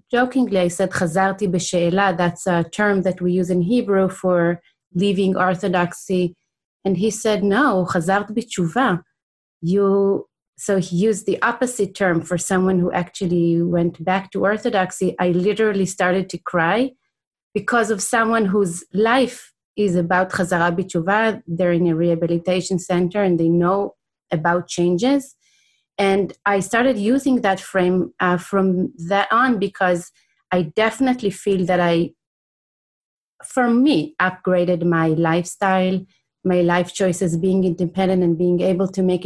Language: English